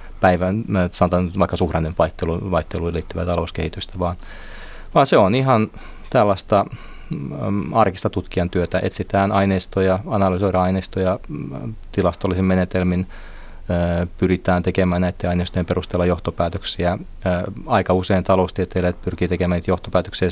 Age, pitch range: 30-49, 85-95 Hz